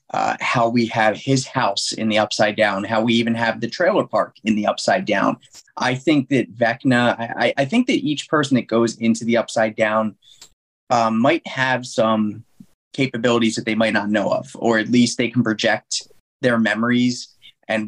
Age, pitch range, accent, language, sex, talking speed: 30-49, 110-125 Hz, American, English, male, 190 wpm